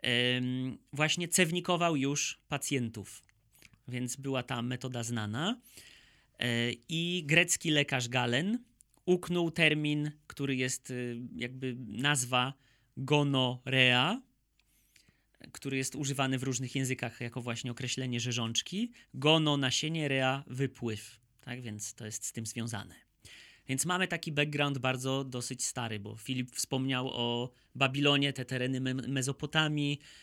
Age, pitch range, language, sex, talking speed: 30-49, 120-150 Hz, Polish, male, 115 wpm